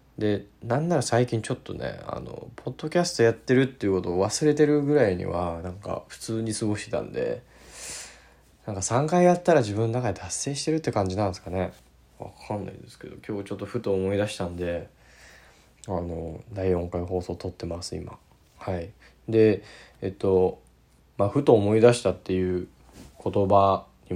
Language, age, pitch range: Japanese, 20-39, 80-115 Hz